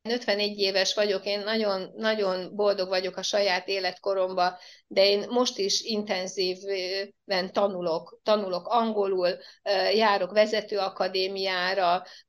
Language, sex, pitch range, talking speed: Hungarian, female, 190-220 Hz, 105 wpm